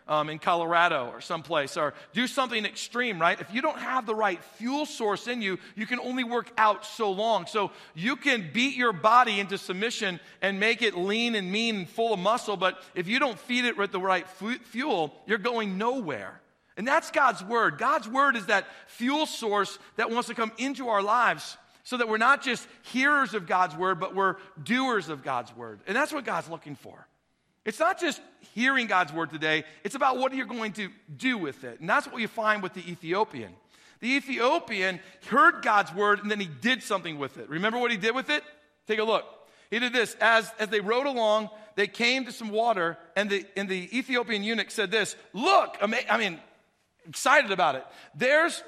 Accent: American